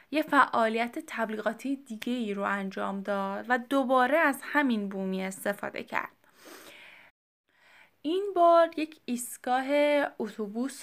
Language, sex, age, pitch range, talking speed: Persian, female, 10-29, 210-275 Hz, 110 wpm